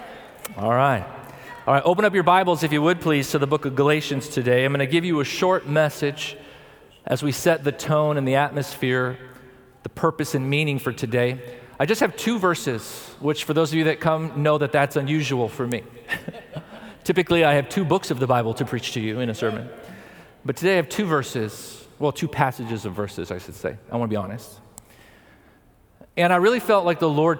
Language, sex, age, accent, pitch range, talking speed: English, male, 40-59, American, 120-150 Hz, 215 wpm